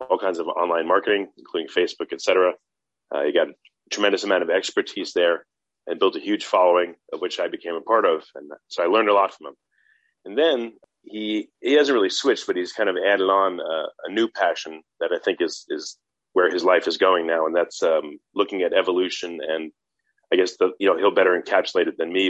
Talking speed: 225 wpm